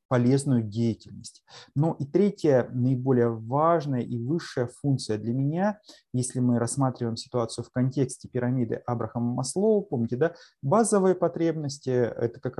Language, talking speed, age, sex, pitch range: Russian, 130 wpm, 20-39, male, 120-140 Hz